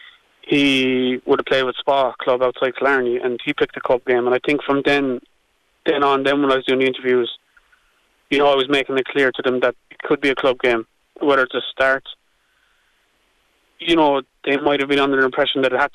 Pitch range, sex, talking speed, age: 125-140 Hz, male, 230 wpm, 20-39